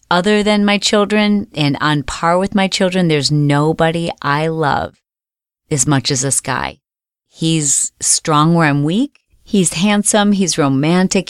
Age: 40-59